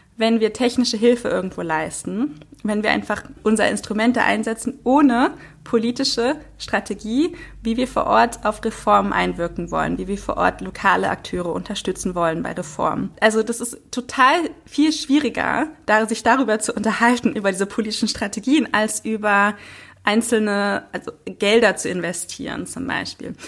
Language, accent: German, German